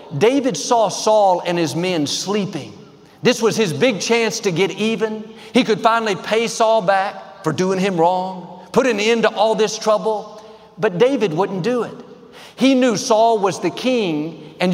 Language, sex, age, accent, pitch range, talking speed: English, male, 50-69, American, 175-225 Hz, 180 wpm